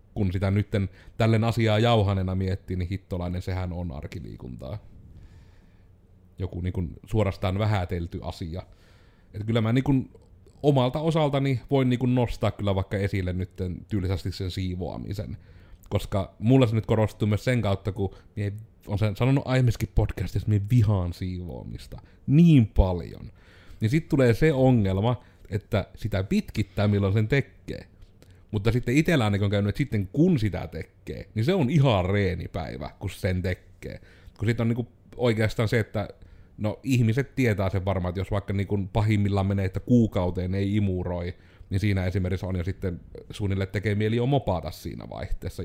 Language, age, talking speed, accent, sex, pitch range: Finnish, 30-49, 155 wpm, native, male, 90-110 Hz